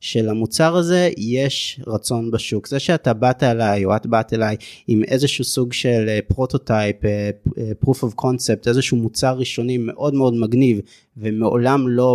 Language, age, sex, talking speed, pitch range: Hebrew, 30-49, male, 150 wpm, 105-135 Hz